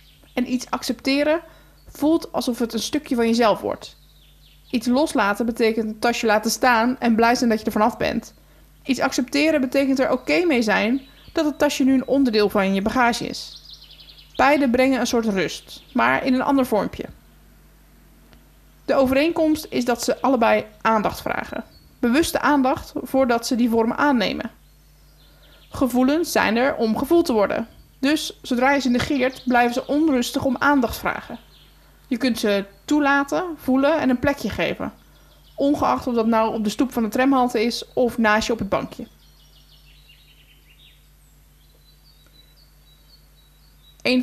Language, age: Dutch, 20-39